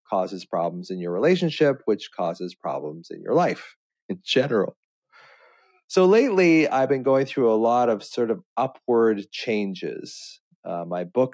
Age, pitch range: 30-49, 95-120 Hz